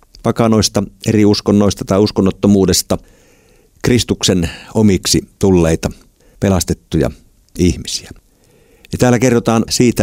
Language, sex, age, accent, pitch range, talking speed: Finnish, male, 50-69, native, 90-110 Hz, 85 wpm